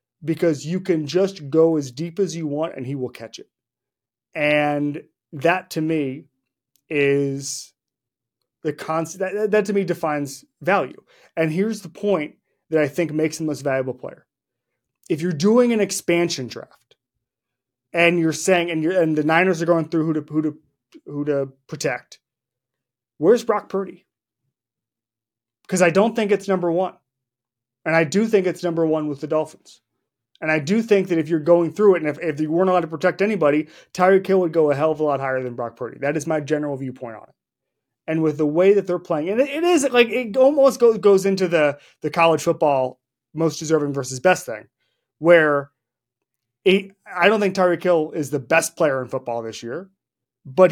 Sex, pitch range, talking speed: male, 140-185 Hz, 200 wpm